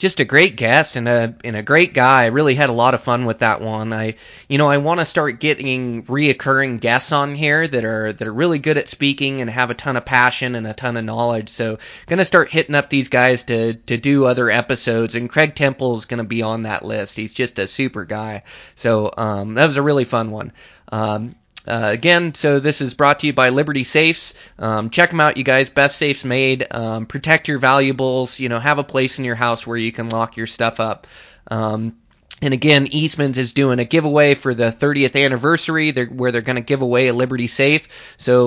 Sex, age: male, 20-39